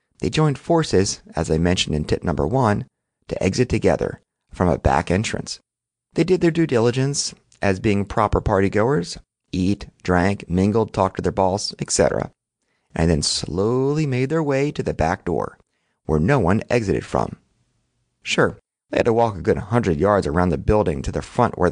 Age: 30-49